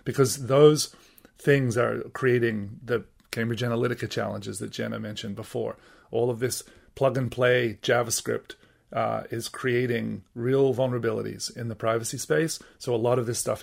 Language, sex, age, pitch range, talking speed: English, male, 30-49, 115-130 Hz, 145 wpm